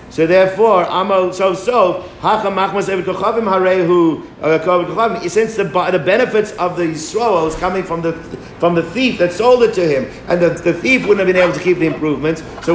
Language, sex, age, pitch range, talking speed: English, male, 50-69, 165-200 Hz, 170 wpm